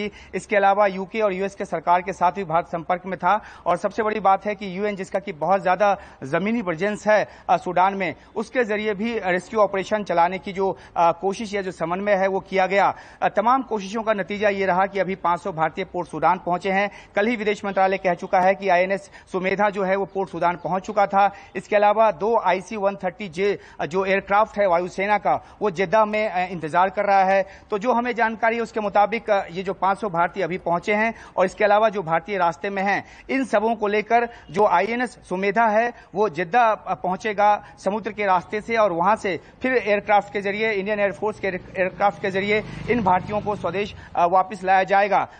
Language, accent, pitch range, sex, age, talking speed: Hindi, native, 185-210 Hz, male, 40-59, 160 wpm